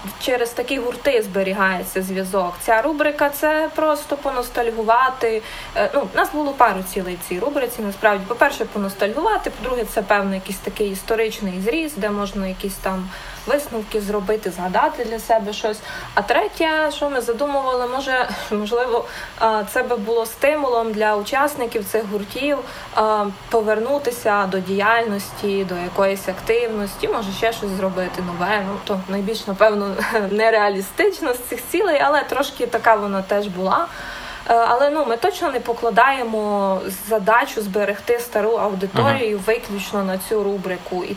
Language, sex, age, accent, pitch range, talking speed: Ukrainian, female, 20-39, native, 200-240 Hz, 135 wpm